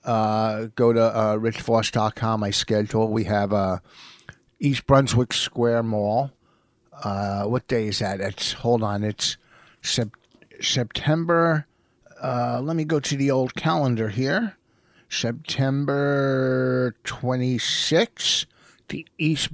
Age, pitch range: 50-69, 105-130 Hz